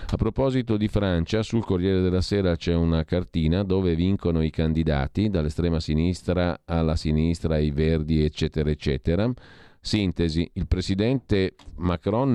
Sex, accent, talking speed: male, native, 130 wpm